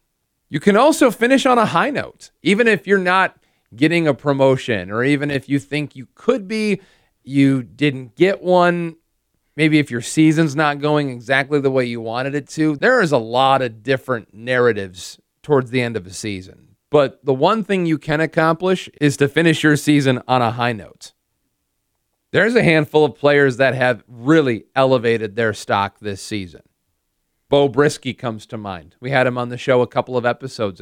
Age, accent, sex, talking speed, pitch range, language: 40-59, American, male, 190 wpm, 115-150 Hz, English